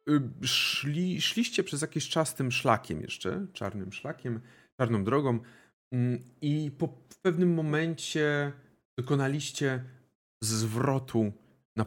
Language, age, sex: Polish, 40-59, male